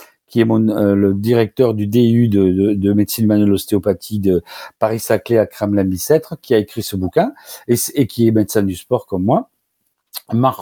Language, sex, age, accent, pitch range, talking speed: French, male, 50-69, French, 105-150 Hz, 200 wpm